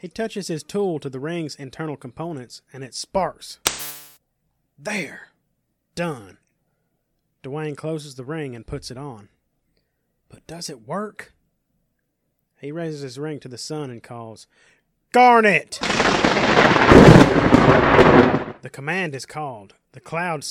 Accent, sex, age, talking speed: American, male, 30-49, 125 wpm